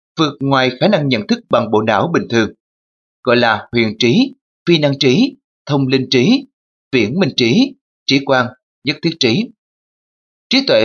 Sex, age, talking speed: male, 20-39, 170 wpm